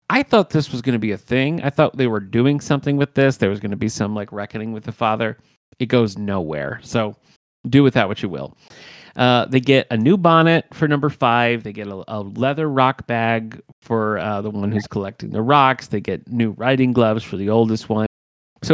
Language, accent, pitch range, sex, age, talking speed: English, American, 105-140 Hz, male, 30-49, 230 wpm